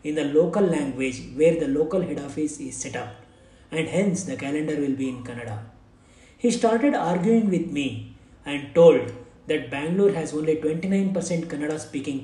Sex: male